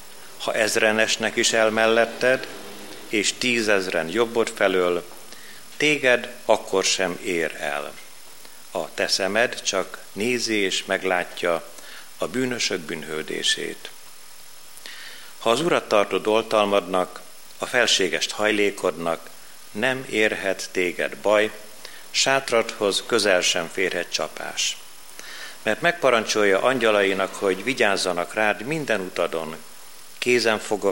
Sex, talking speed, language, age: male, 95 wpm, Hungarian, 50-69